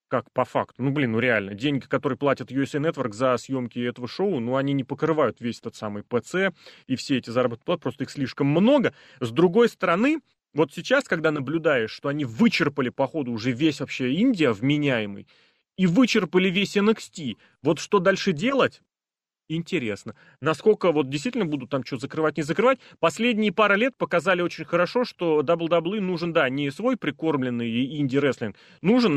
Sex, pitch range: male, 135-195 Hz